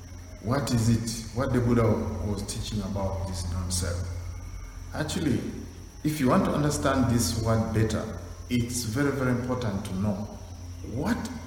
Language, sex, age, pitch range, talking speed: English, male, 50-69, 90-115 Hz, 140 wpm